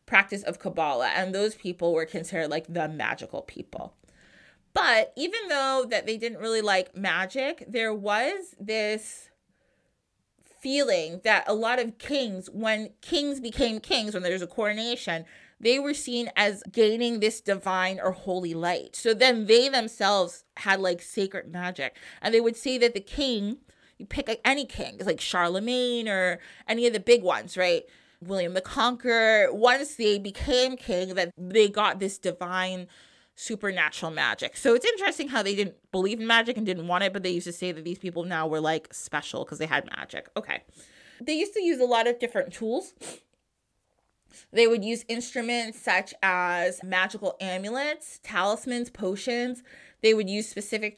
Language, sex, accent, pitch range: English, female, American, 185-240 Hz